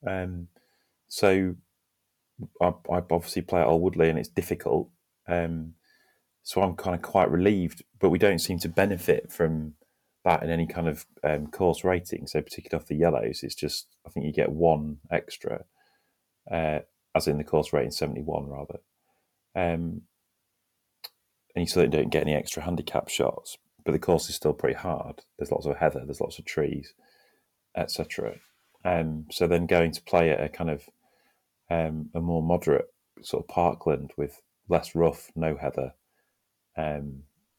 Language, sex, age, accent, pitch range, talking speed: English, male, 30-49, British, 75-85 Hz, 165 wpm